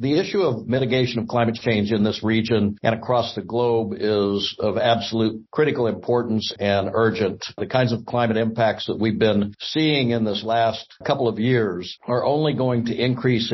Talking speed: 180 wpm